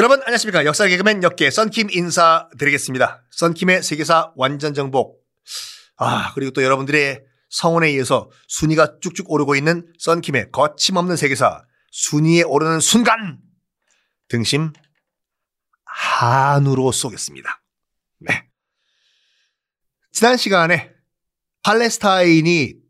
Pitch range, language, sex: 140-190 Hz, Korean, male